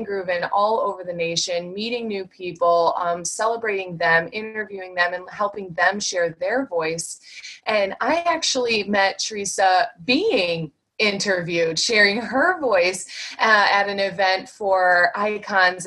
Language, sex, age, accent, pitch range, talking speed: English, female, 20-39, American, 185-260 Hz, 130 wpm